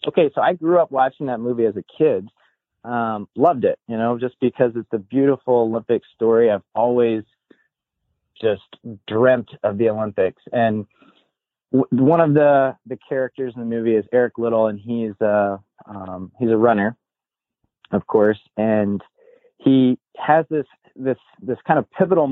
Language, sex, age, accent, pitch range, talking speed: English, male, 30-49, American, 110-130 Hz, 165 wpm